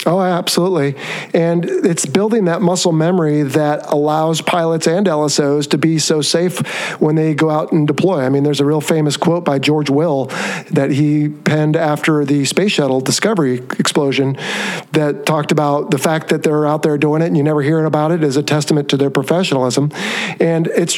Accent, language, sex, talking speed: American, English, male, 190 wpm